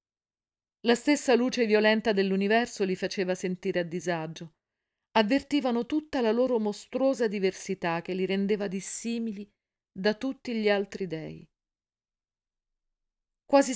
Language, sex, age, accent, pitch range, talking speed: Italian, female, 50-69, native, 180-235 Hz, 115 wpm